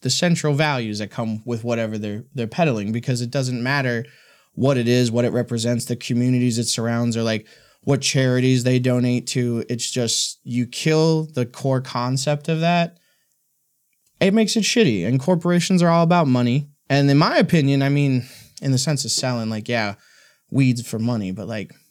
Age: 20-39